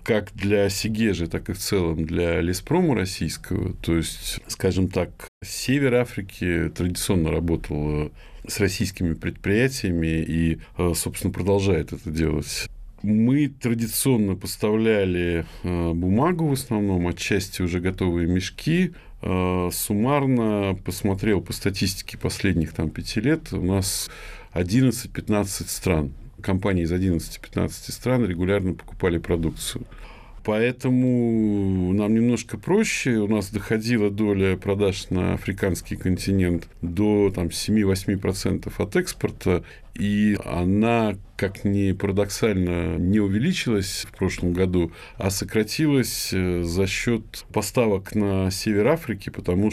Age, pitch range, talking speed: 50-69, 90-110 Hz, 105 wpm